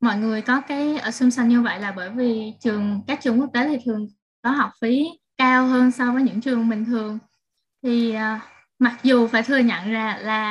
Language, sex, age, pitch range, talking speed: Vietnamese, female, 10-29, 215-255 Hz, 210 wpm